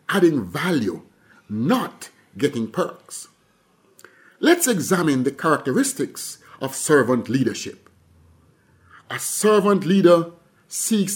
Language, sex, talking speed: English, male, 85 wpm